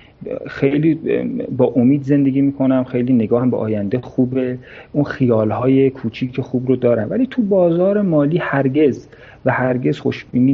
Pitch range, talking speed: 125-180 Hz, 135 wpm